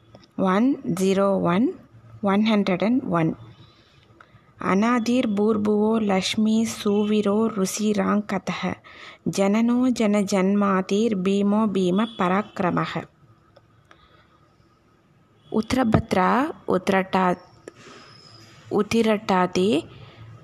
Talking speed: 55 wpm